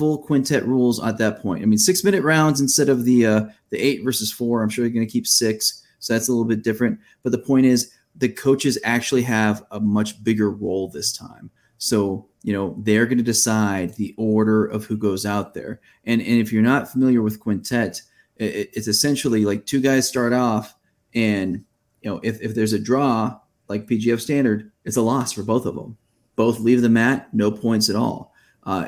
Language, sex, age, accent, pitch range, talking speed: English, male, 30-49, American, 110-130 Hz, 210 wpm